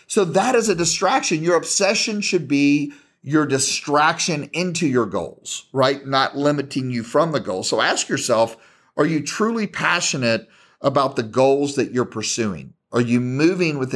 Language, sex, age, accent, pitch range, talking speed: English, male, 40-59, American, 115-150 Hz, 165 wpm